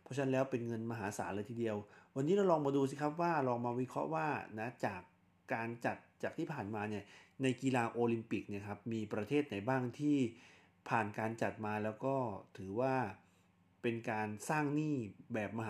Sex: male